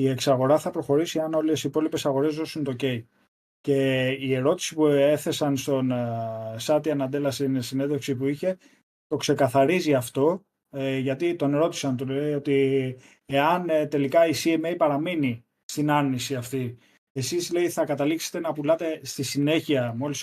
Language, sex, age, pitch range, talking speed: Greek, male, 20-39, 135-160 Hz, 145 wpm